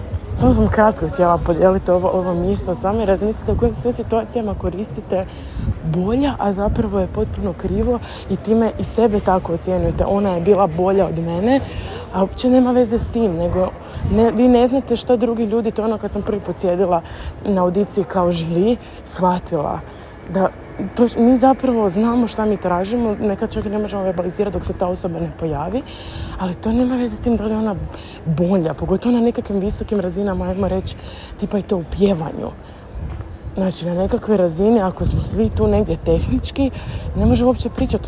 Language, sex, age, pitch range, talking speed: Croatian, female, 20-39, 180-230 Hz, 180 wpm